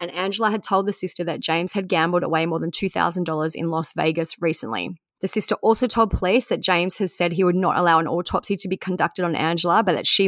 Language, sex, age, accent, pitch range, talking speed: English, female, 20-39, Australian, 170-195 Hz, 240 wpm